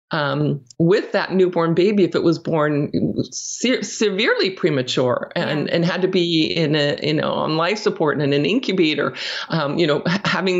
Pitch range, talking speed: 165-200 Hz, 180 wpm